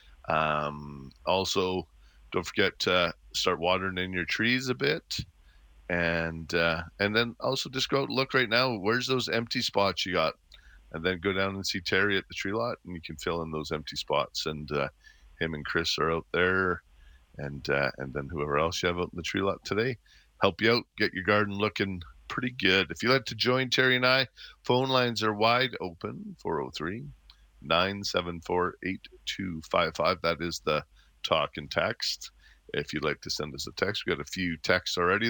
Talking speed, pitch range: 200 wpm, 85-120 Hz